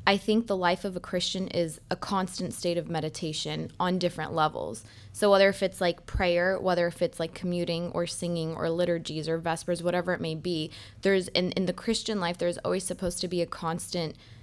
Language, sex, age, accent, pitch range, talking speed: English, female, 20-39, American, 170-200 Hz, 210 wpm